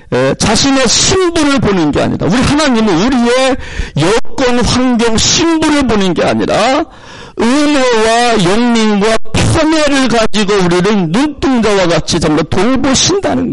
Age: 50-69